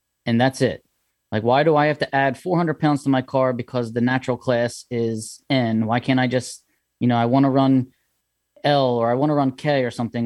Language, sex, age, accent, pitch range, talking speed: English, male, 20-39, American, 115-140 Hz, 235 wpm